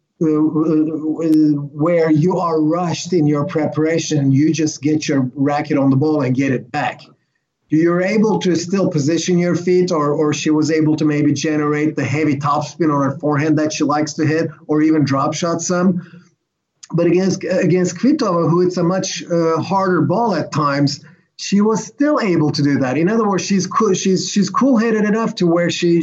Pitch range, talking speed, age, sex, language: 155-185 Hz, 195 wpm, 30-49, male, English